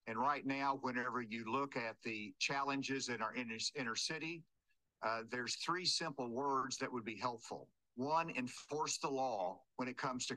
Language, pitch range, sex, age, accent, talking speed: English, 125-150 Hz, male, 50-69, American, 180 wpm